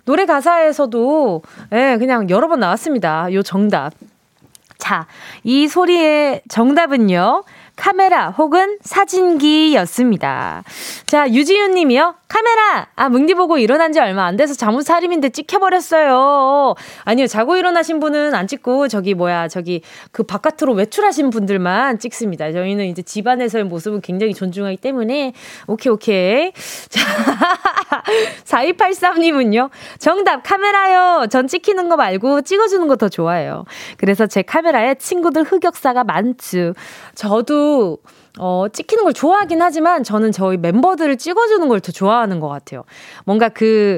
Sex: female